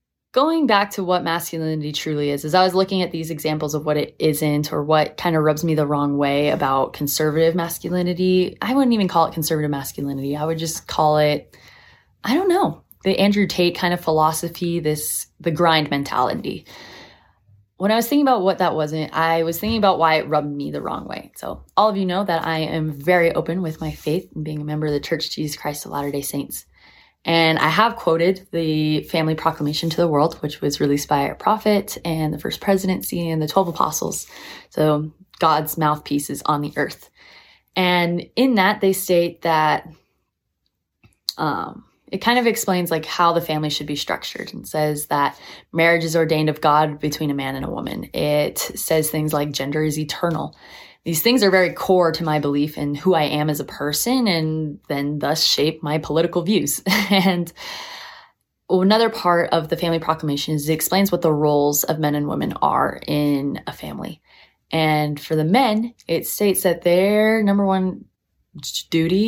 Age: 20-39